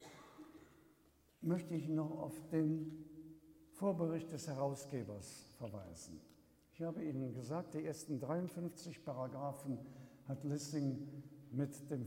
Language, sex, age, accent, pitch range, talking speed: German, male, 70-89, German, 125-155 Hz, 105 wpm